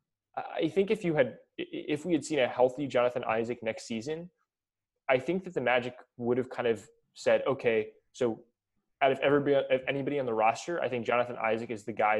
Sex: male